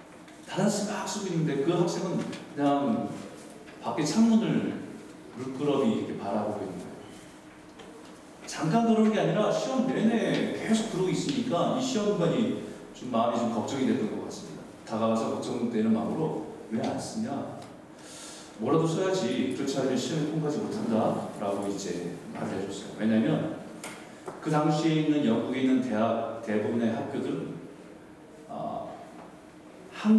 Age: 40-59